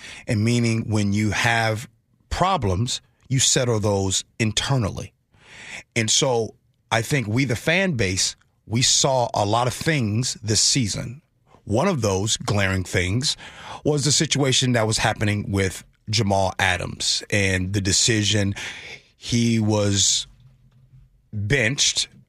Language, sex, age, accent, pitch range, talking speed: English, male, 30-49, American, 110-145 Hz, 125 wpm